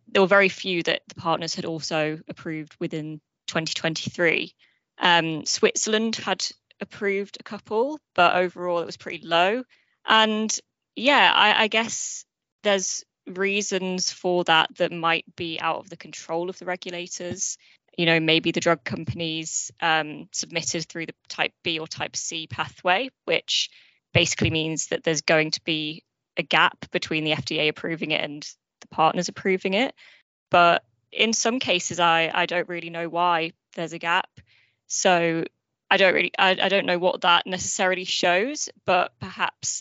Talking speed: 160 wpm